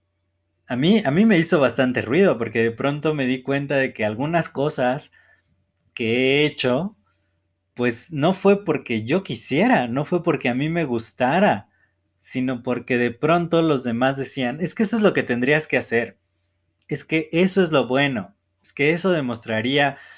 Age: 20-39